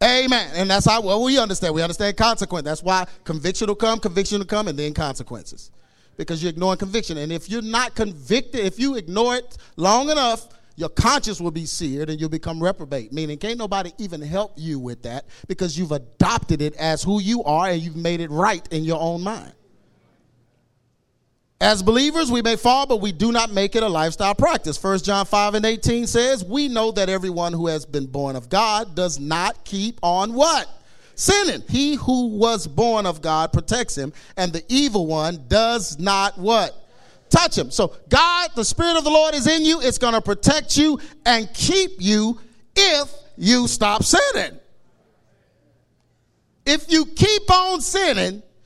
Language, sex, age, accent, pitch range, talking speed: English, male, 40-59, American, 165-245 Hz, 185 wpm